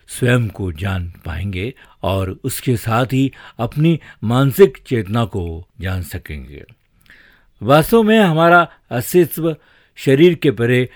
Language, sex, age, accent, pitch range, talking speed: Hindi, male, 50-69, native, 105-145 Hz, 110 wpm